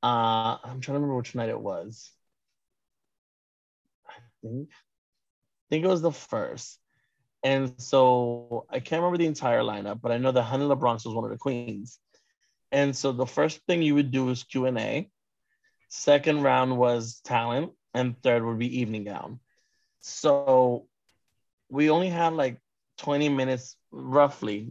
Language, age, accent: English, 30-49, American